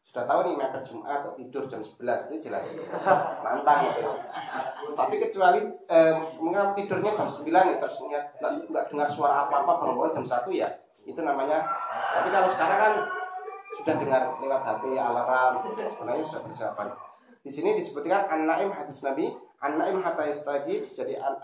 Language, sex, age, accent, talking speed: Indonesian, male, 30-49, native, 150 wpm